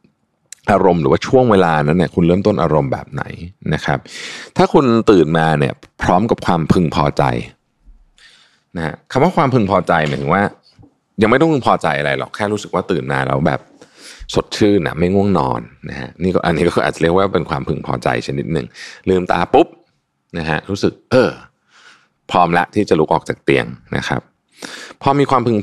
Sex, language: male, Thai